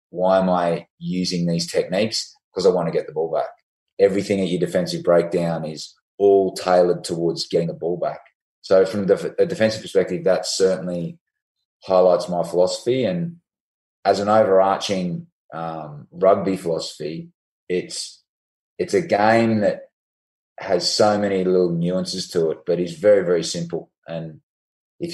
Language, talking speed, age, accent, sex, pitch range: English, 150 wpm, 20-39, Australian, male, 85-105 Hz